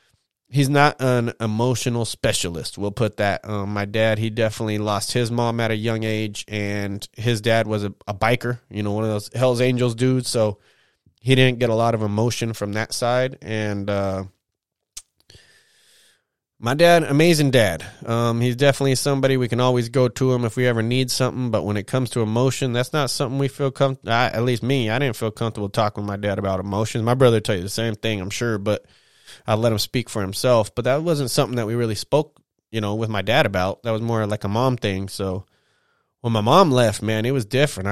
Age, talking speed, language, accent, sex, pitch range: 20-39, 220 wpm, English, American, male, 105-125 Hz